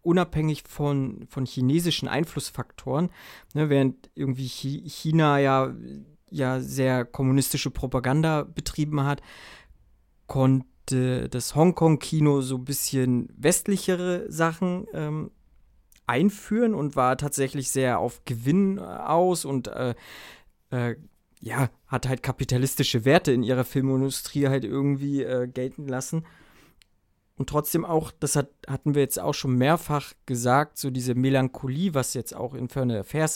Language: German